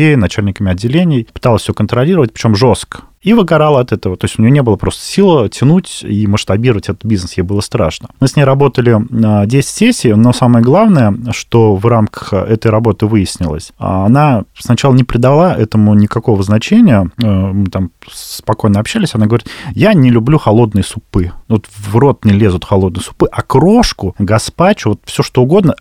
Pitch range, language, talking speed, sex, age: 105-135 Hz, Russian, 170 wpm, male, 30-49